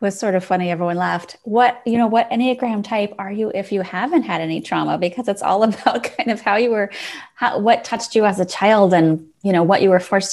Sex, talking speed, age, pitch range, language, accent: female, 250 wpm, 30-49, 170-205 Hz, English, American